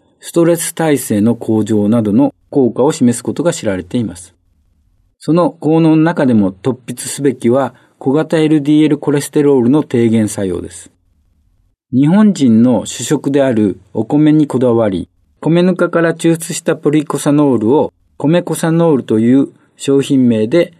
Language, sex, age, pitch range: Japanese, male, 50-69, 110-155 Hz